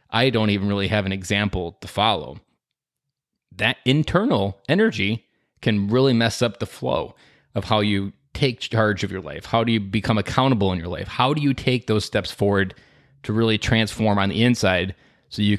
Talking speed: 190 wpm